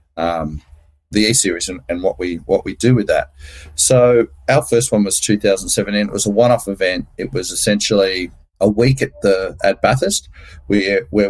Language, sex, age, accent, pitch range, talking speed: English, male, 30-49, Australian, 95-115 Hz, 195 wpm